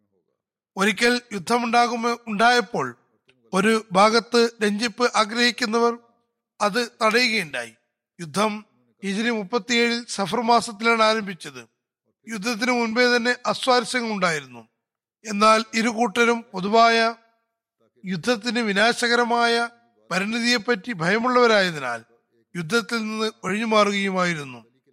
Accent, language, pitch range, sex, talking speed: native, Malayalam, 195-240 Hz, male, 75 wpm